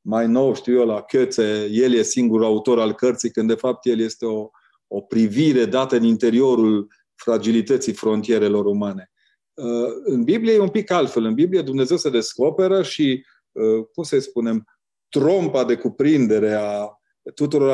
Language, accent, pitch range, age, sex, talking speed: Romanian, native, 110-145 Hz, 30-49, male, 155 wpm